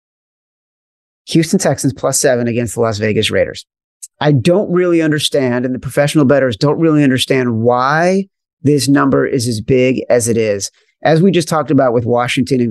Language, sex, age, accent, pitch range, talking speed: English, male, 40-59, American, 125-155 Hz, 175 wpm